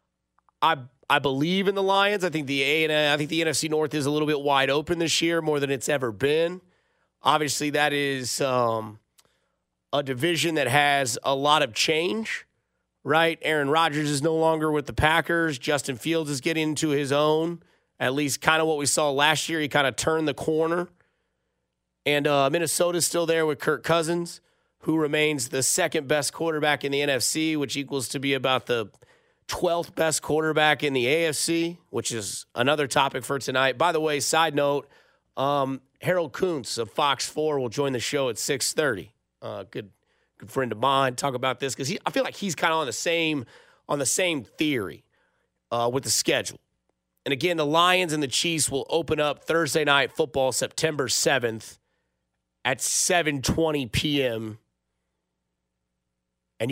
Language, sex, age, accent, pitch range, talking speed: English, male, 30-49, American, 130-160 Hz, 185 wpm